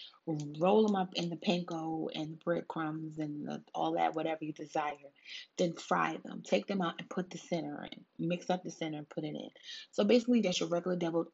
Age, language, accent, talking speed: 30-49, English, American, 215 wpm